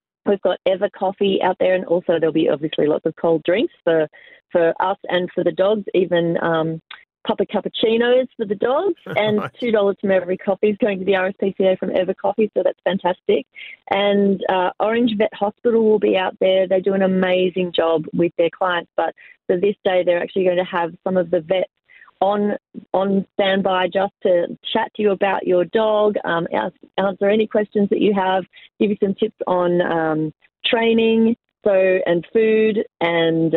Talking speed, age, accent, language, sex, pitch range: 190 wpm, 30-49, Australian, English, female, 175-210 Hz